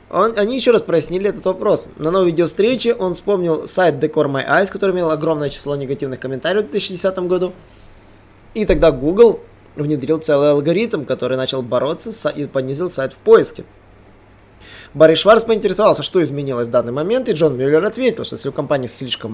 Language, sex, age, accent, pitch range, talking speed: Russian, male, 20-39, native, 145-195 Hz, 175 wpm